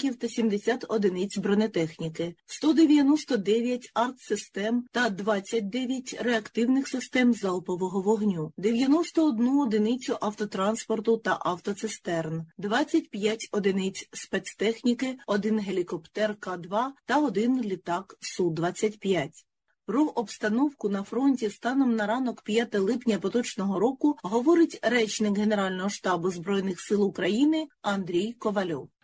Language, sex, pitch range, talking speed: Ukrainian, female, 175-220 Hz, 95 wpm